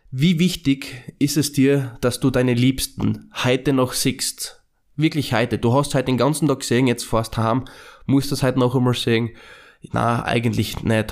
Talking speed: 185 wpm